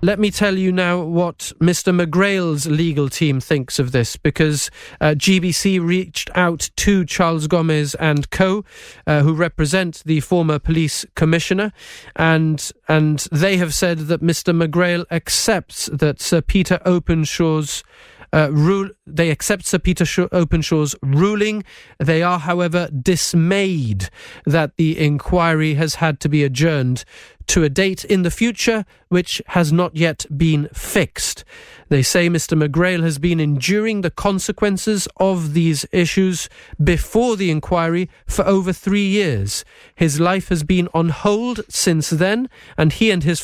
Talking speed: 150 wpm